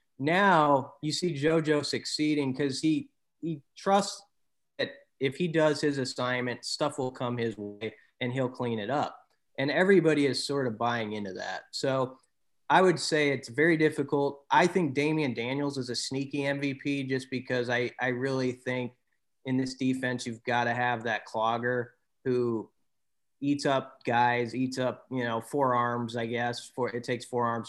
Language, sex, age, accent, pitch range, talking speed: English, male, 30-49, American, 120-145 Hz, 170 wpm